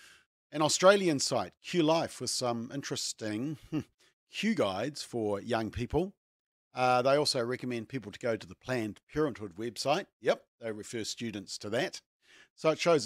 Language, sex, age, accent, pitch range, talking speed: English, male, 50-69, Australian, 115-150 Hz, 150 wpm